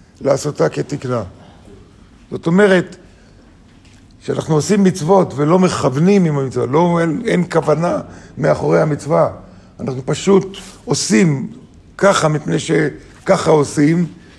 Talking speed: 100 wpm